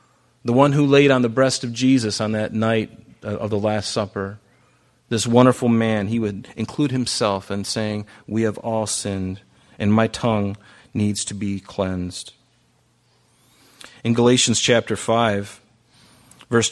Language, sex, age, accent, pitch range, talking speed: English, male, 40-59, American, 105-125 Hz, 145 wpm